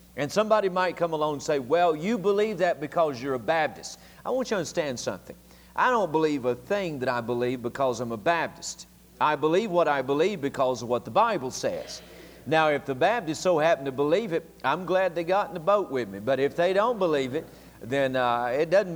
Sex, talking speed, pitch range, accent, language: male, 230 wpm, 130-180 Hz, American, English